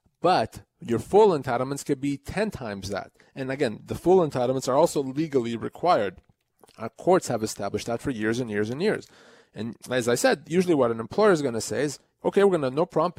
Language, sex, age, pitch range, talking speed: English, male, 30-49, 125-165 Hz, 215 wpm